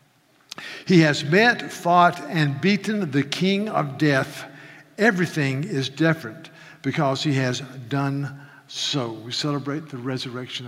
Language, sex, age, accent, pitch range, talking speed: English, male, 60-79, American, 145-180 Hz, 125 wpm